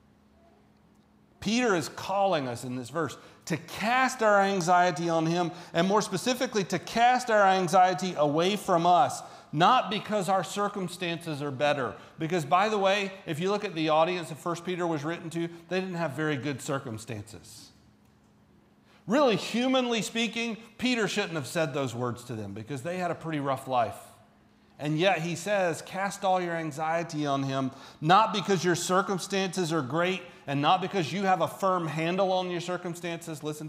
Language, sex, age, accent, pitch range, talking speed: English, male, 40-59, American, 125-185 Hz, 175 wpm